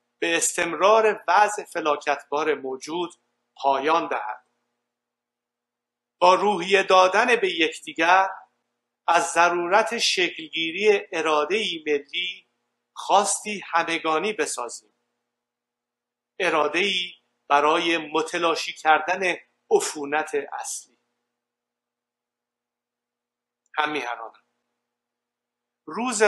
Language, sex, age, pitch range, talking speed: Persian, male, 50-69, 150-210 Hz, 70 wpm